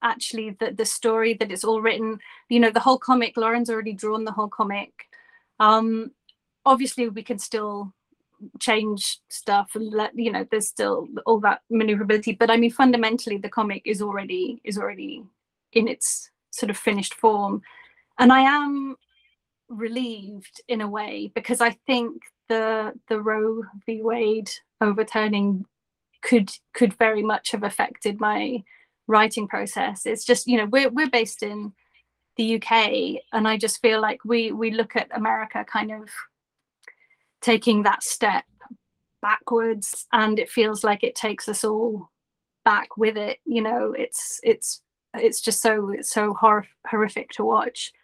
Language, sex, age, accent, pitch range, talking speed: English, female, 30-49, British, 215-250 Hz, 155 wpm